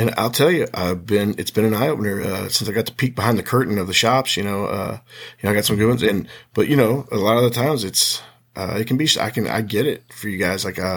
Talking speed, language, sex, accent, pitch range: 310 wpm, English, male, American, 100-120 Hz